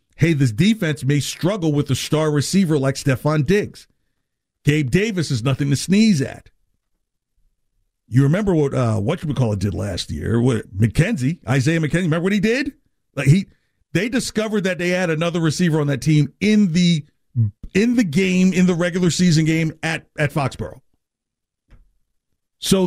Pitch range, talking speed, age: 135-180 Hz, 170 wpm, 50-69